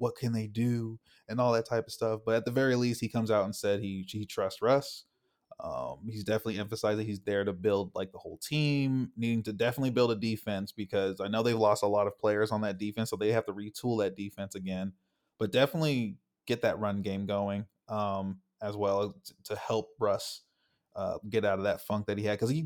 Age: 20-39